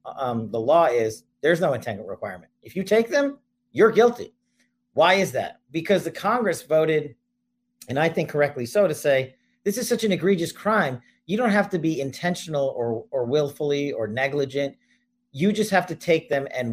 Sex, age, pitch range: male, 40-59, 120-180 Hz